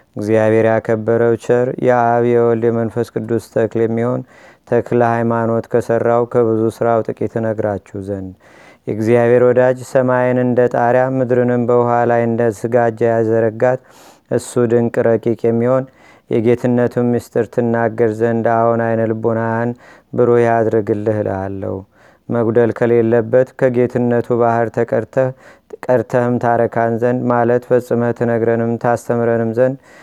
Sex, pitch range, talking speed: male, 115-125 Hz, 105 wpm